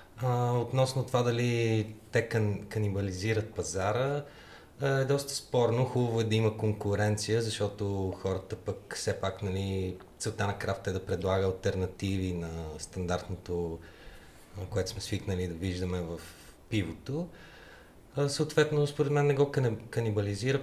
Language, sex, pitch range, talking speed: Bulgarian, male, 90-115 Hz, 120 wpm